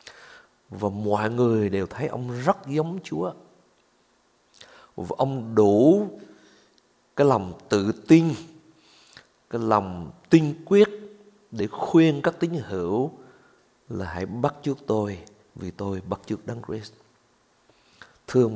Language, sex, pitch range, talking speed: Vietnamese, male, 100-130 Hz, 120 wpm